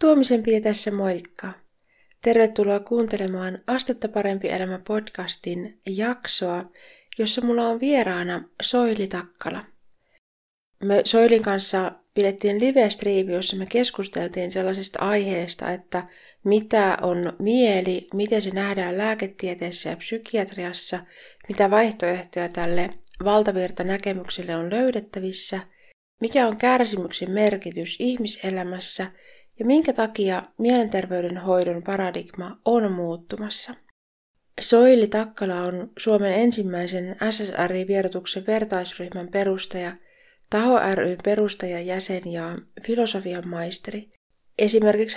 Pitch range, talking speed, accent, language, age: 180-220 Hz, 90 wpm, native, Finnish, 30-49